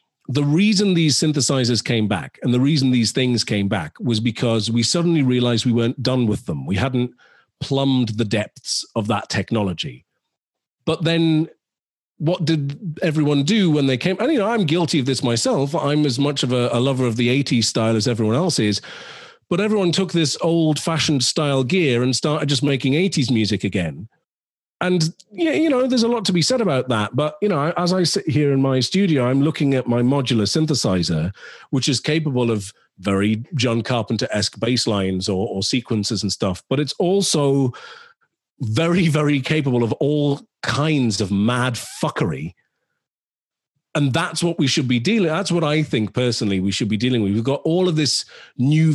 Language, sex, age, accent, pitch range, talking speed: English, male, 40-59, British, 115-155 Hz, 190 wpm